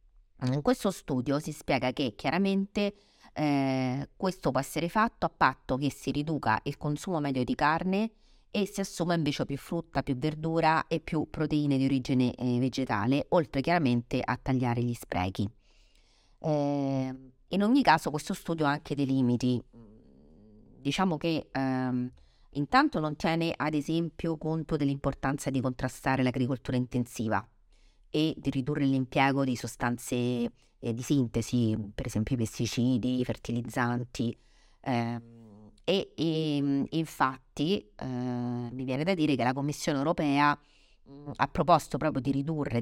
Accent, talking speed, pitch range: native, 140 wpm, 120-155 Hz